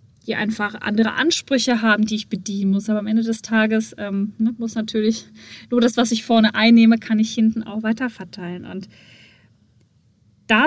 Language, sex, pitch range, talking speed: German, female, 210-245 Hz, 175 wpm